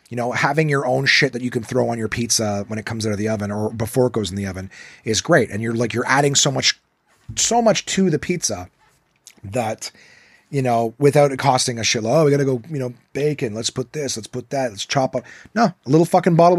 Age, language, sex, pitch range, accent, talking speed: 30-49, English, male, 110-150 Hz, American, 255 wpm